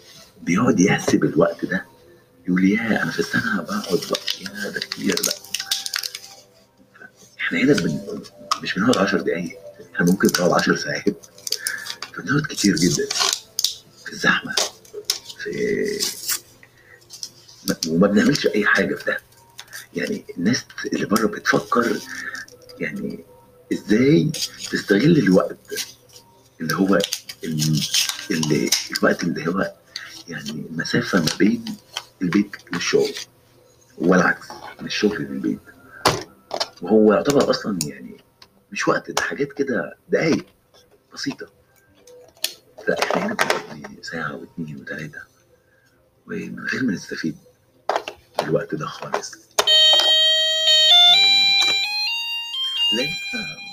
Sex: male